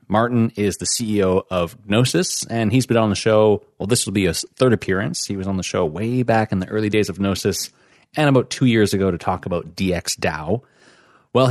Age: 30-49